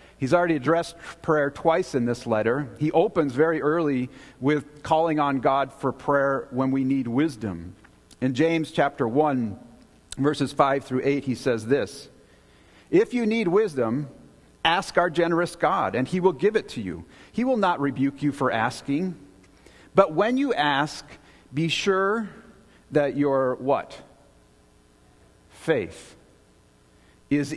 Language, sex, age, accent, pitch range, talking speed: English, male, 50-69, American, 115-165 Hz, 145 wpm